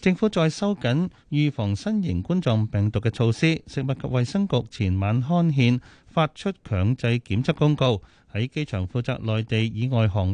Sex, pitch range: male, 105-155 Hz